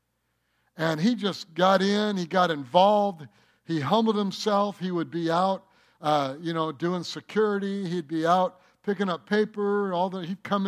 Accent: American